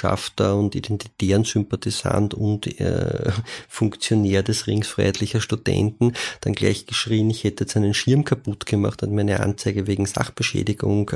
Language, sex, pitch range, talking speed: German, male, 100-120 Hz, 125 wpm